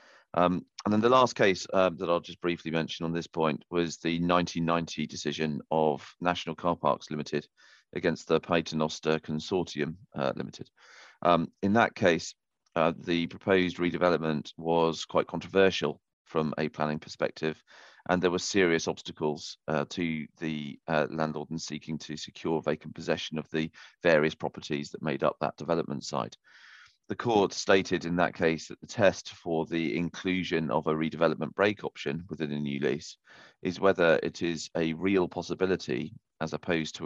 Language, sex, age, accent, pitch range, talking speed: English, male, 30-49, British, 80-90 Hz, 165 wpm